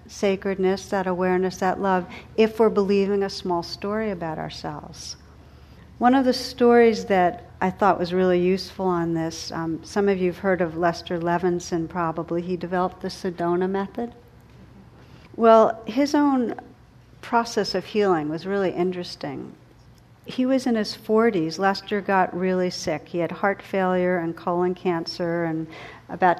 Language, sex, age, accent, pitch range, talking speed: English, female, 60-79, American, 170-200 Hz, 155 wpm